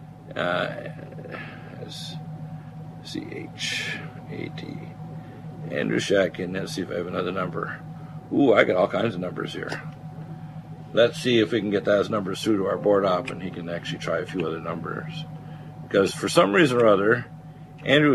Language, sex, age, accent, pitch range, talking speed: English, male, 50-69, American, 100-155 Hz, 160 wpm